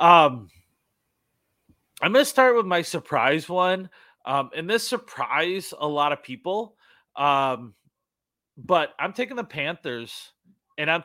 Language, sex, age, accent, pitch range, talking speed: English, male, 30-49, American, 130-175 Hz, 135 wpm